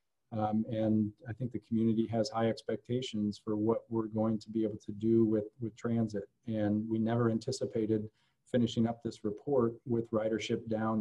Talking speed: 175 wpm